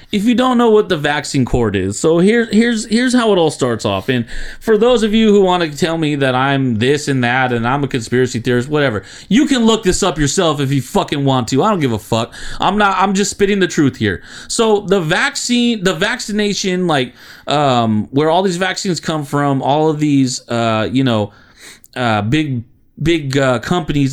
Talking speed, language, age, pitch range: 215 wpm, English, 30-49, 130-185 Hz